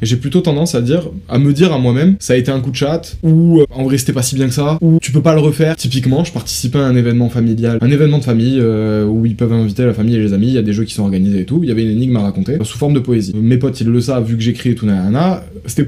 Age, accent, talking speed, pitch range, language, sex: 20-39, French, 340 wpm, 115-155 Hz, French, male